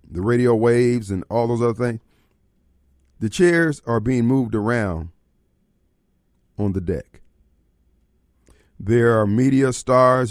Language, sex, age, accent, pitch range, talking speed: English, male, 40-59, American, 90-125 Hz, 120 wpm